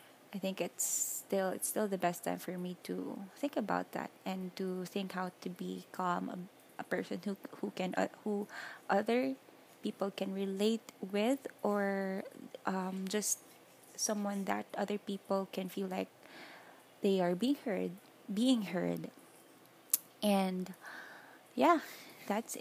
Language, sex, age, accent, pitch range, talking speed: English, female, 20-39, Filipino, 180-205 Hz, 140 wpm